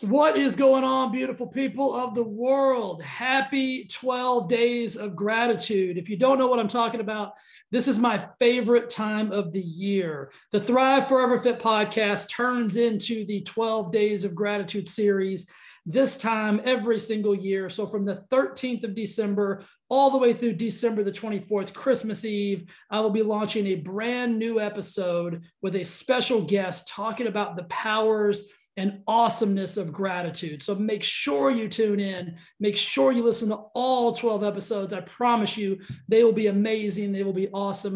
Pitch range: 195-235 Hz